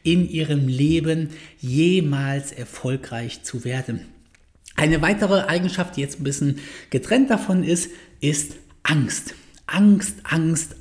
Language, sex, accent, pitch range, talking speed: German, male, German, 160-210 Hz, 115 wpm